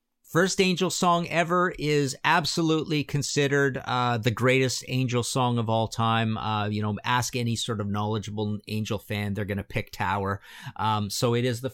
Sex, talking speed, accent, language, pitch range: male, 180 wpm, American, English, 105-135 Hz